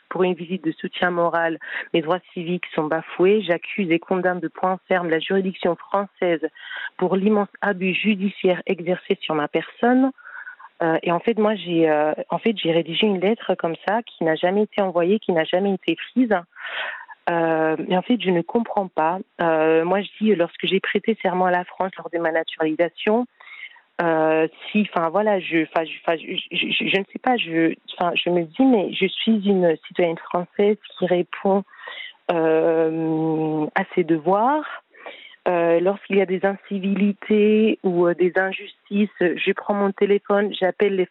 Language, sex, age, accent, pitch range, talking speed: French, female, 40-59, French, 170-205 Hz, 175 wpm